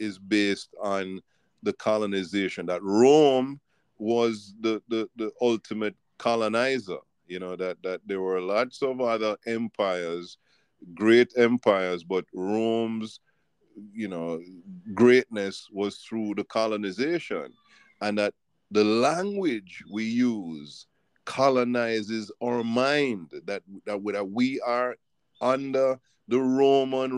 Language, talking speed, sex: English, 110 wpm, male